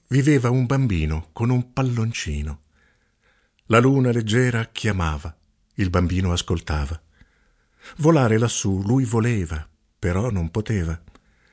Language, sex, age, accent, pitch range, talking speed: Italian, male, 50-69, native, 85-130 Hz, 105 wpm